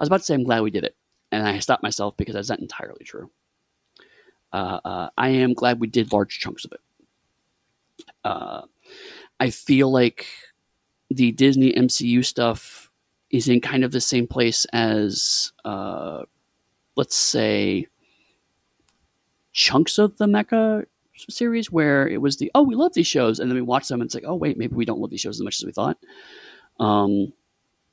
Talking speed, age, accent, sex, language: 185 wpm, 30-49, American, male, English